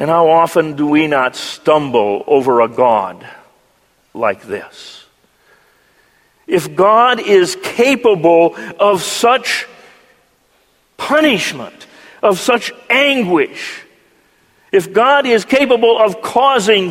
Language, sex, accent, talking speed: English, male, American, 100 wpm